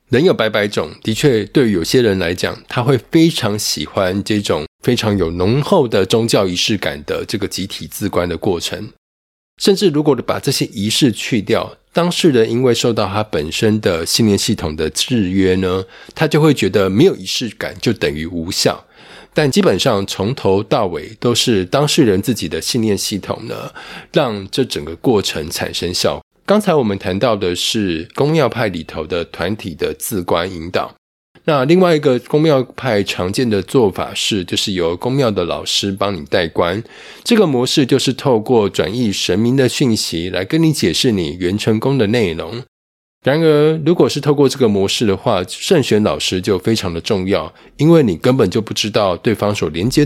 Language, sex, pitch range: Chinese, male, 95-135 Hz